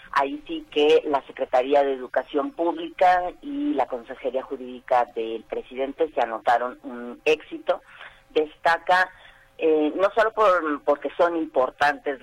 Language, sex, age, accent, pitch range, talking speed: Spanish, female, 40-59, American, 125-165 Hz, 130 wpm